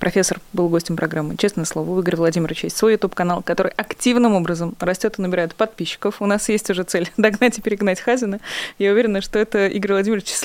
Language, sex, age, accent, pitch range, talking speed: Russian, female, 20-39, native, 170-215 Hz, 200 wpm